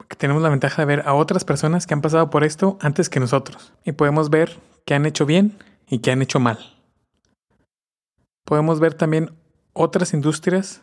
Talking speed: 190 wpm